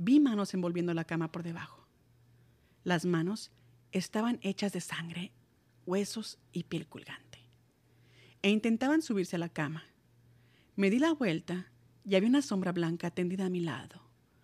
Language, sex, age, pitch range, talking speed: Spanish, female, 40-59, 170-250 Hz, 150 wpm